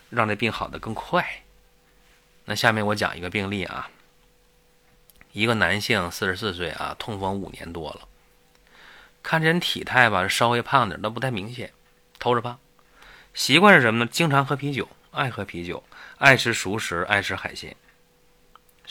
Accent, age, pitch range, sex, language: native, 20-39, 95-120 Hz, male, Chinese